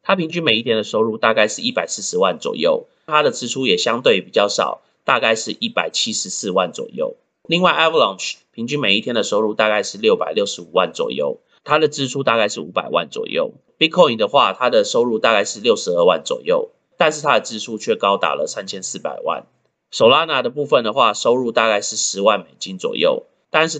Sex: male